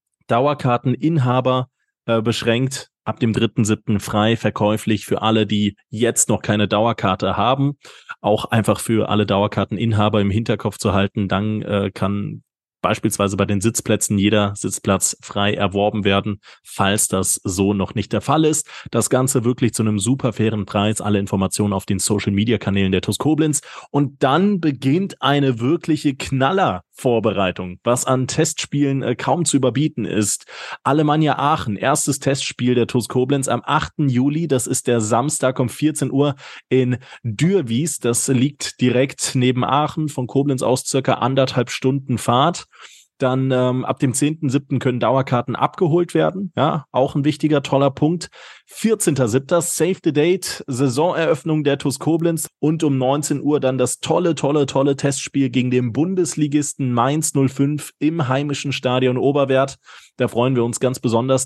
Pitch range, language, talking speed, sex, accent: 110-145 Hz, German, 150 wpm, male, German